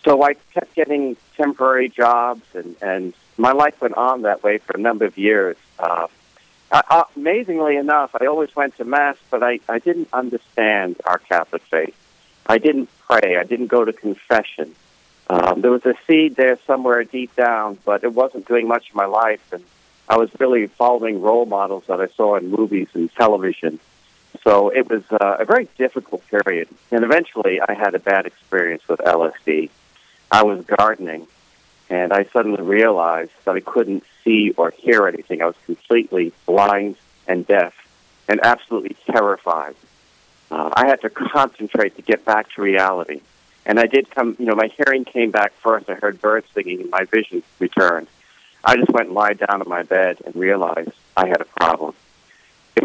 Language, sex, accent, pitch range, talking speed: English, male, American, 100-130 Hz, 180 wpm